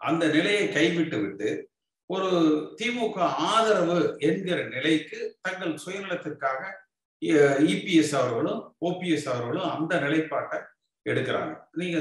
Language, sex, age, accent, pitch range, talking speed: Tamil, male, 50-69, native, 140-180 Hz, 95 wpm